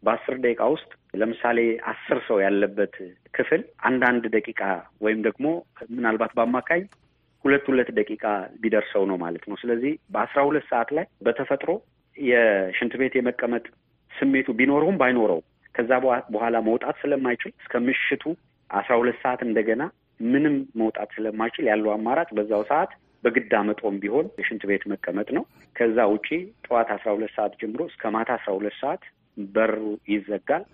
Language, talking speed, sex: English, 120 wpm, male